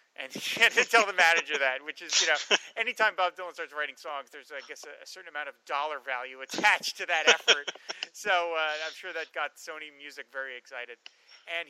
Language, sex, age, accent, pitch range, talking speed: English, male, 30-49, American, 145-190 Hz, 220 wpm